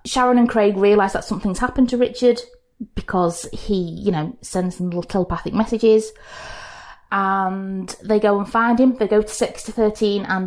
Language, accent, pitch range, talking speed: English, British, 175-225 Hz, 170 wpm